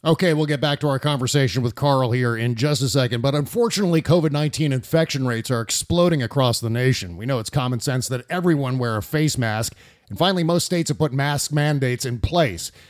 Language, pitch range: English, 125-155 Hz